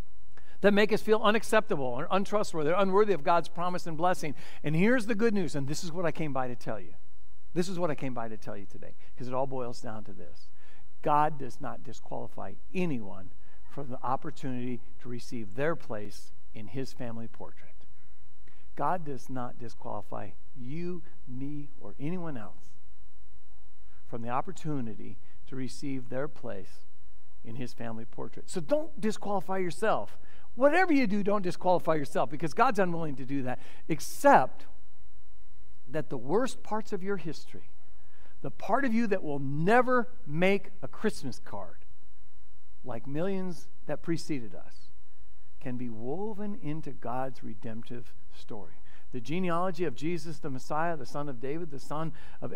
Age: 60-79